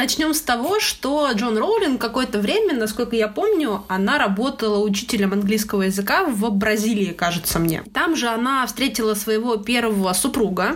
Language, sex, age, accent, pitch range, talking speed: Russian, female, 20-39, native, 200-245 Hz, 150 wpm